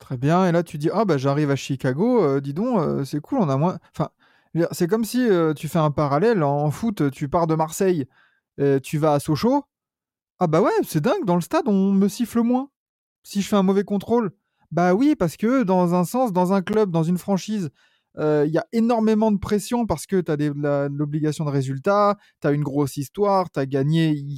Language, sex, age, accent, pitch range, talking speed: French, male, 20-39, French, 145-195 Hz, 230 wpm